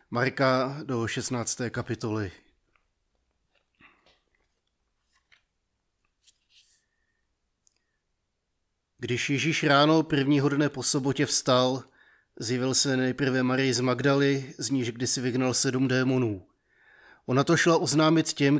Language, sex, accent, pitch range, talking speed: Czech, male, native, 125-140 Hz, 95 wpm